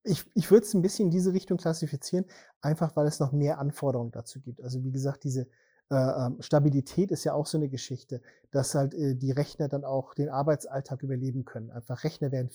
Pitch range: 130-160 Hz